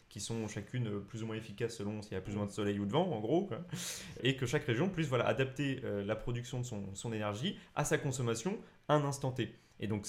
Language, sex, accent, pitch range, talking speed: French, male, French, 105-140 Hz, 245 wpm